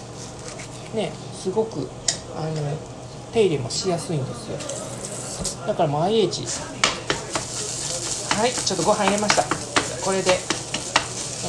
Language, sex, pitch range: Japanese, male, 145-200 Hz